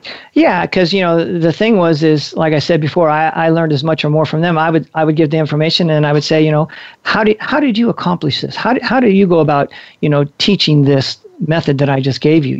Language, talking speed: English, 280 wpm